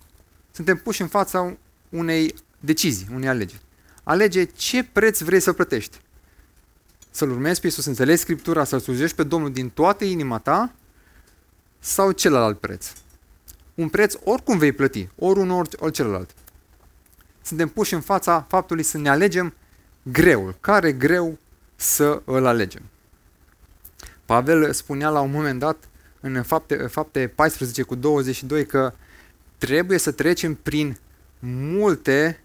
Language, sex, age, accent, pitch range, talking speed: Romanian, male, 30-49, native, 100-165 Hz, 135 wpm